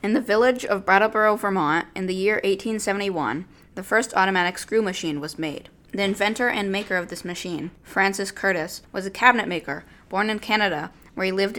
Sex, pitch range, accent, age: female, 175-205 Hz, American, 10-29